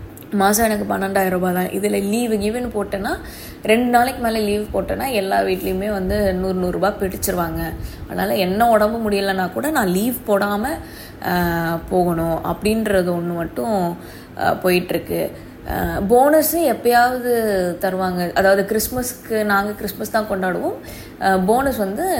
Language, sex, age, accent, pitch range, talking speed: Tamil, female, 20-39, native, 185-225 Hz, 115 wpm